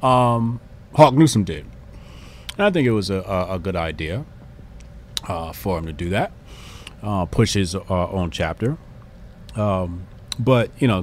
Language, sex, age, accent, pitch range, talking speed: English, male, 30-49, American, 90-115 Hz, 165 wpm